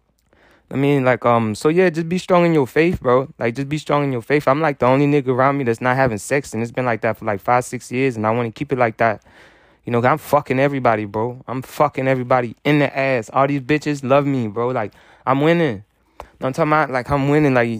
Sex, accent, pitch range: male, American, 120-150 Hz